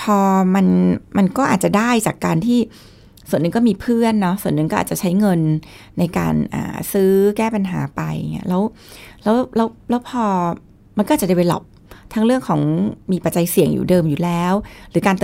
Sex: female